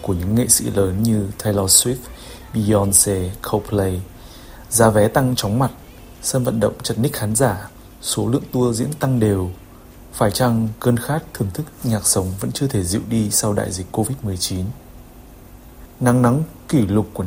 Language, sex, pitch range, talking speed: Vietnamese, male, 100-125 Hz, 175 wpm